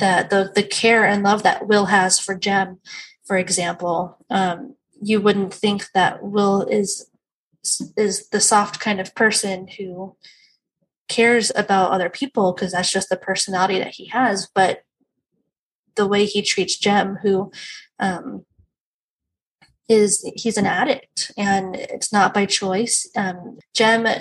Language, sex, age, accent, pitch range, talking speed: English, female, 20-39, American, 190-220 Hz, 140 wpm